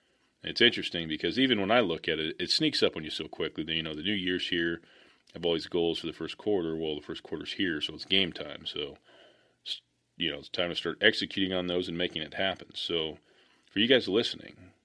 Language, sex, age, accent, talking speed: English, male, 30-49, American, 240 wpm